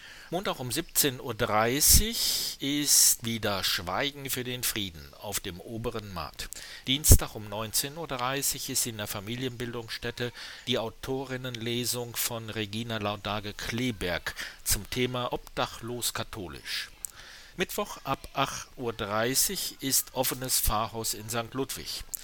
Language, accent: German, German